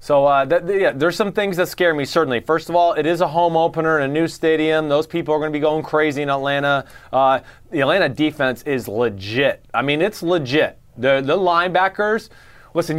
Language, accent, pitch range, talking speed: English, American, 135-170 Hz, 215 wpm